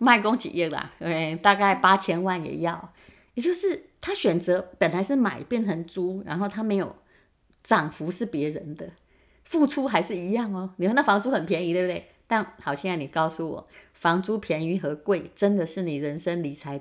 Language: Chinese